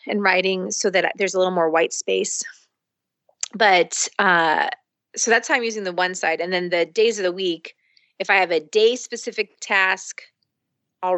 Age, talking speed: 30-49, 190 wpm